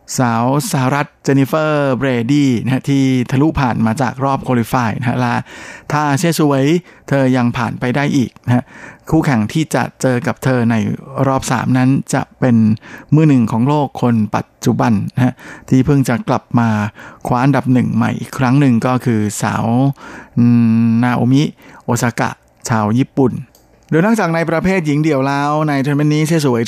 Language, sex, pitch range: Thai, male, 120-140 Hz